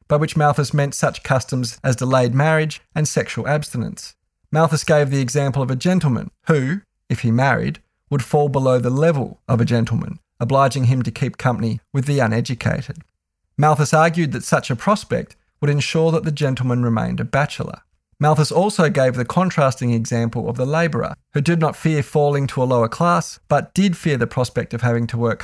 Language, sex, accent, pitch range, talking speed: English, male, Australian, 120-155 Hz, 190 wpm